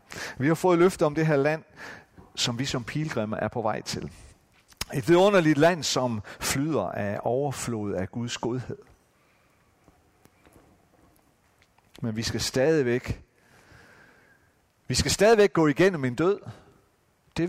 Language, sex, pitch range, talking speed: Danish, male, 105-150 Hz, 130 wpm